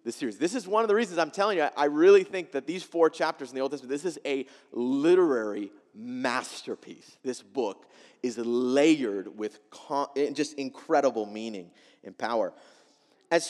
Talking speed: 160 wpm